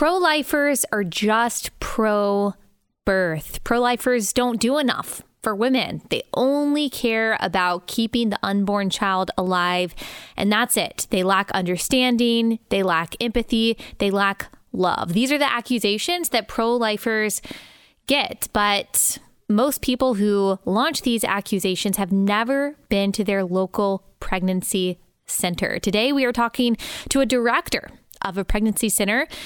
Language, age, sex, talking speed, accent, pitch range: English, 20-39, female, 130 wpm, American, 205-270 Hz